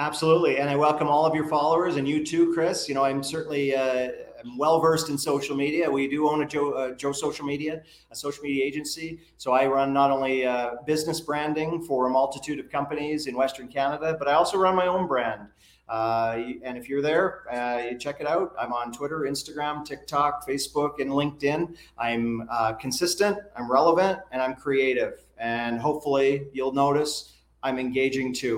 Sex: male